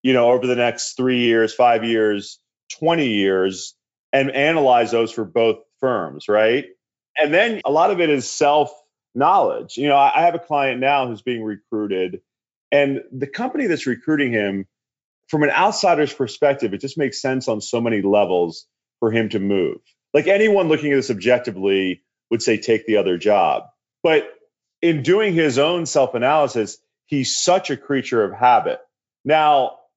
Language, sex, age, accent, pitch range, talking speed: English, male, 30-49, American, 115-155 Hz, 165 wpm